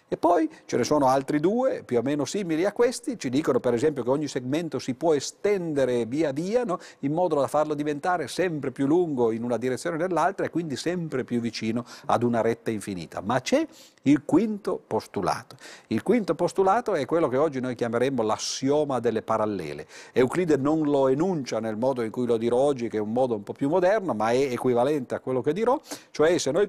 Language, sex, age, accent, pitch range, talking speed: Italian, male, 50-69, native, 120-185 Hz, 210 wpm